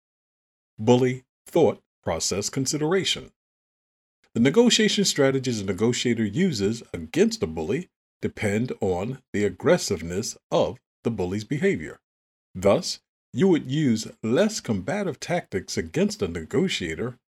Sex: male